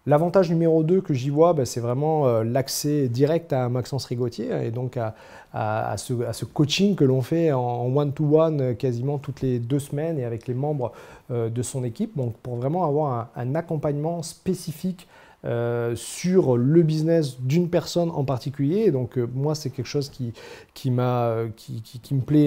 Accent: French